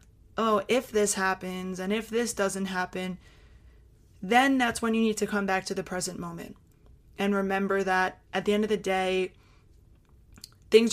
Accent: American